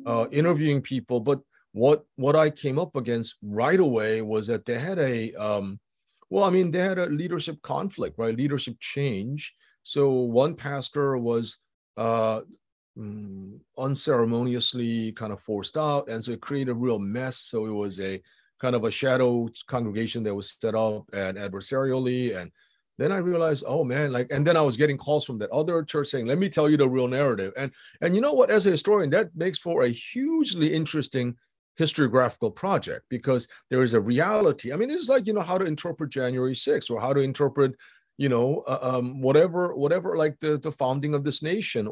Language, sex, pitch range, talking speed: English, male, 115-150 Hz, 195 wpm